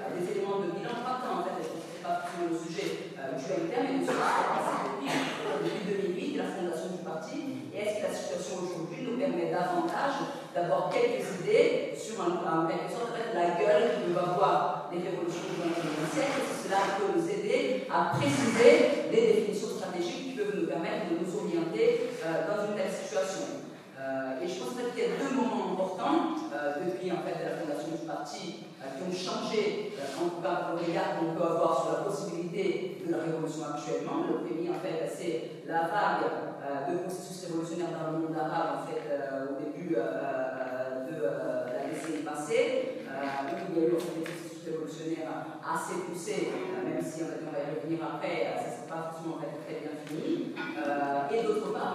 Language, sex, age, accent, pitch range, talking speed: French, female, 40-59, French, 160-210 Hz, 185 wpm